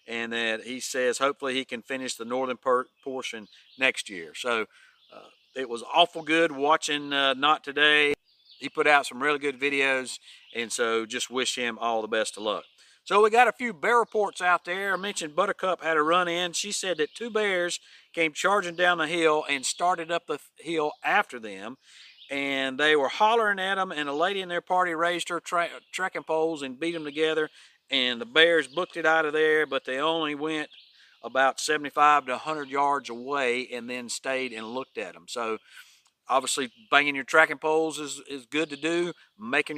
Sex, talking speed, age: male, 195 wpm, 50-69